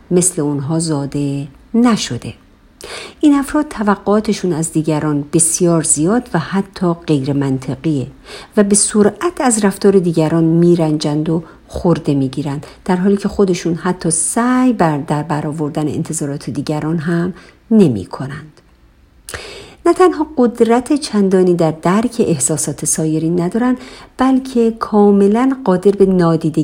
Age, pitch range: 50-69, 155-210 Hz